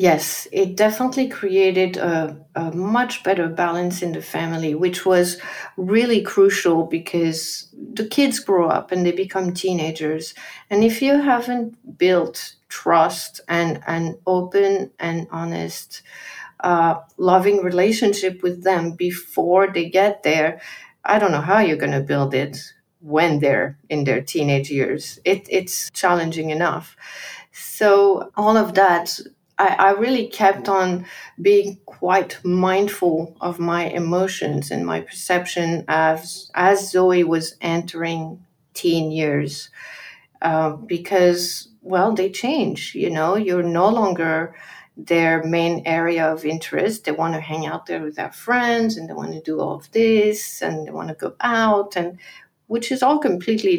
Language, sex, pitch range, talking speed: English, female, 165-200 Hz, 145 wpm